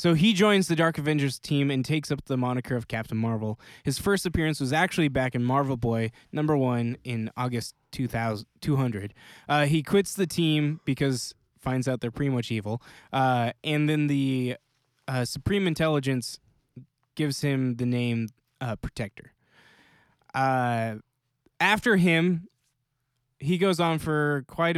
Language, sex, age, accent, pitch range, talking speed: English, male, 20-39, American, 125-150 Hz, 150 wpm